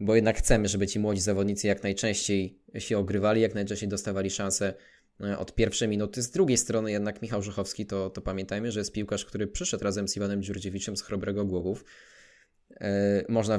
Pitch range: 100-110 Hz